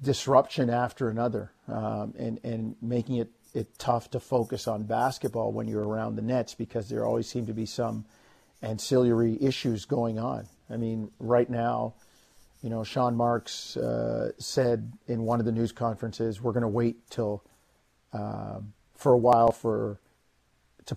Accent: American